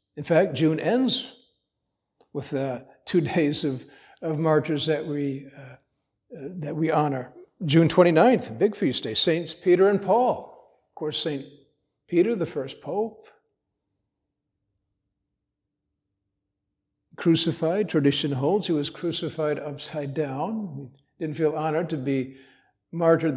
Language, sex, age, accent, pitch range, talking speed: English, male, 50-69, American, 140-165 Hz, 125 wpm